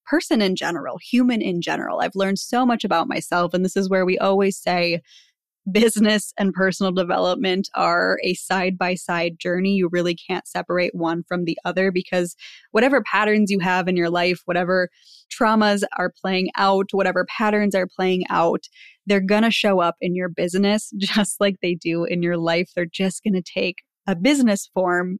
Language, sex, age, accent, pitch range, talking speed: English, female, 20-39, American, 180-215 Hz, 180 wpm